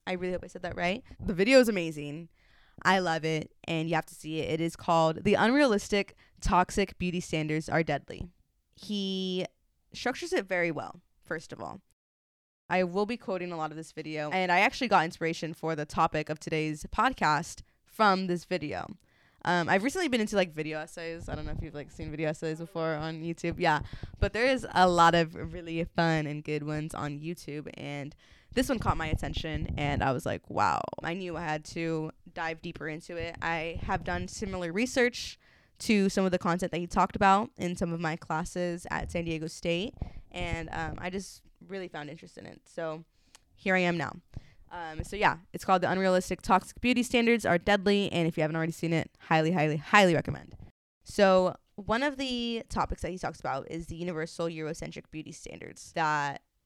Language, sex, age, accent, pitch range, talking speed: English, female, 20-39, American, 160-190 Hz, 200 wpm